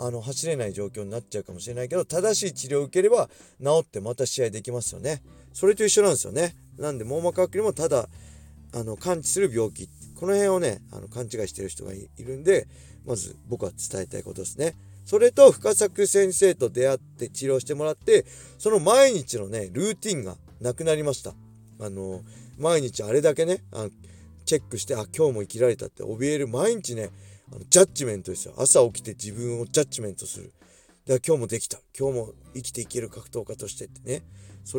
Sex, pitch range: male, 105-155 Hz